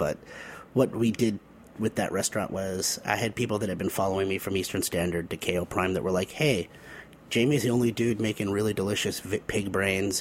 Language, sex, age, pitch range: English, male, 30-49, 95-120 Hz